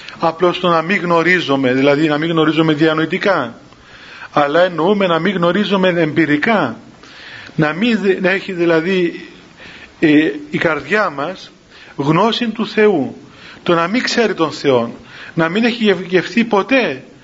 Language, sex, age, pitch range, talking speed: Greek, male, 40-59, 160-200 Hz, 130 wpm